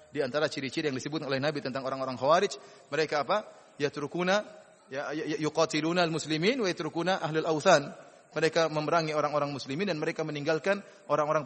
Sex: male